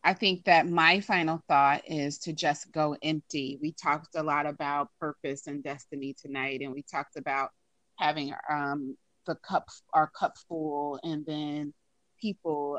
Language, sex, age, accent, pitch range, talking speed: English, female, 30-49, American, 145-165 Hz, 160 wpm